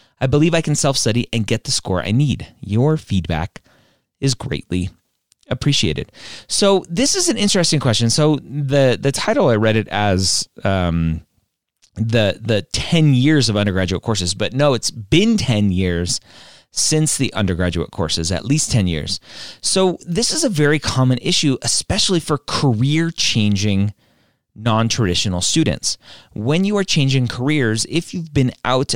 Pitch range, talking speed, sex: 105-145 Hz, 150 wpm, male